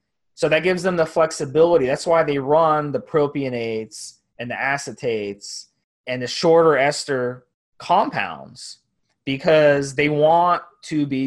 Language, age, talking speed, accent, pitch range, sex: English, 20-39, 135 wpm, American, 140-170 Hz, male